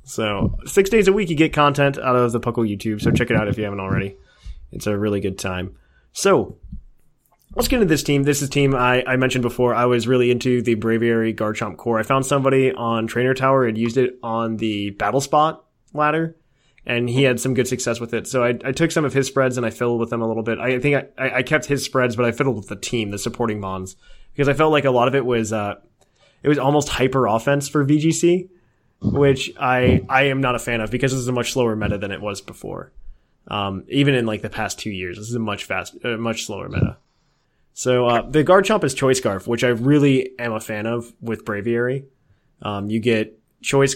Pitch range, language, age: 110-135 Hz, English, 20-39